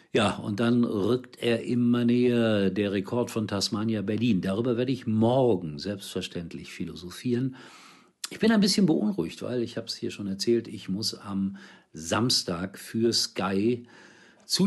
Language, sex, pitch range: German, male, 100-120 Hz